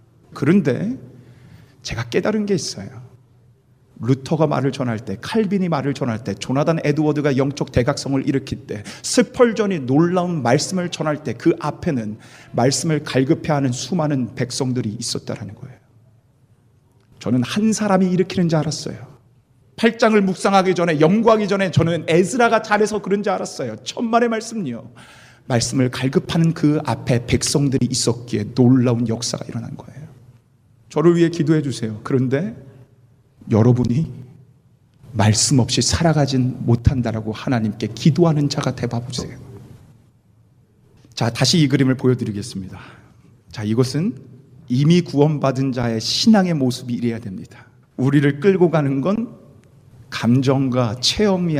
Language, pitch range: Korean, 120-155 Hz